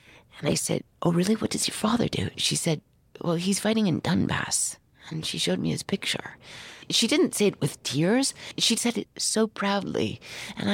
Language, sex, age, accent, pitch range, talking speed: English, female, 40-59, American, 135-200 Hz, 195 wpm